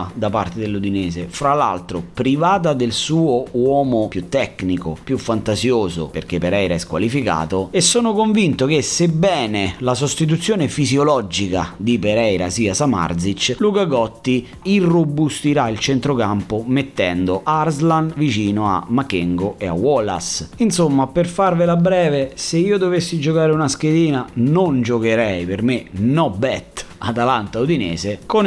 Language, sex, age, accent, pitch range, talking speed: Italian, male, 30-49, native, 100-155 Hz, 130 wpm